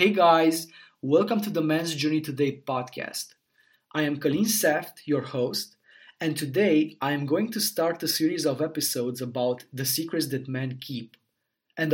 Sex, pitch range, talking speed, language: male, 130-160 Hz, 165 wpm, English